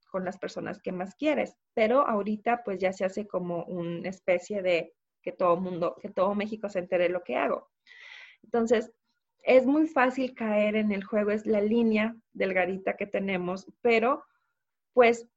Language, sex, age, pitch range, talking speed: Spanish, female, 30-49, 190-235 Hz, 170 wpm